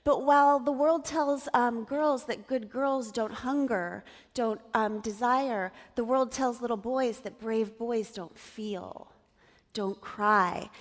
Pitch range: 220-260 Hz